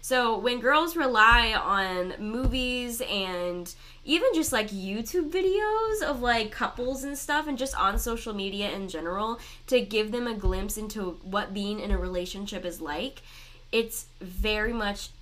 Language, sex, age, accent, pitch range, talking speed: English, female, 10-29, American, 185-230 Hz, 160 wpm